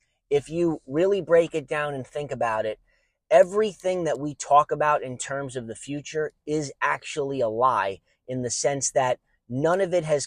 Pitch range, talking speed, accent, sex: 130-160 Hz, 185 wpm, American, male